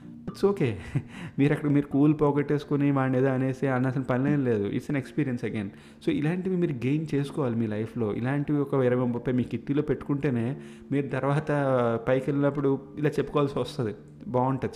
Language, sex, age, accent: Telugu, male, 30-49, native